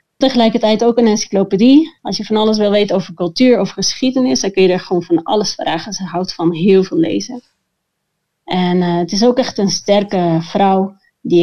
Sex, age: female, 30-49